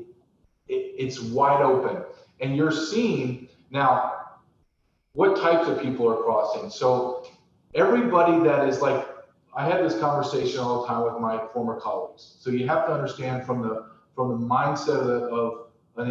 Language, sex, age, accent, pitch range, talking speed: English, male, 40-59, American, 120-175 Hz, 155 wpm